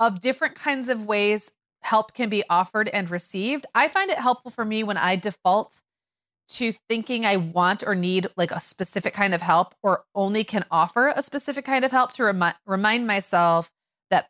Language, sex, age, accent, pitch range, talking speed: English, female, 30-49, American, 170-215 Hz, 190 wpm